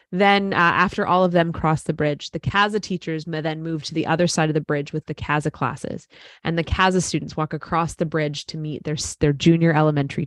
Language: English